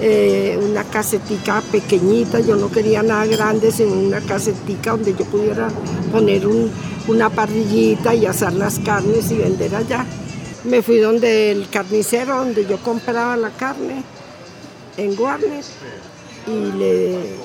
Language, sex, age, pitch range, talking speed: Spanish, female, 50-69, 200-230 Hz, 135 wpm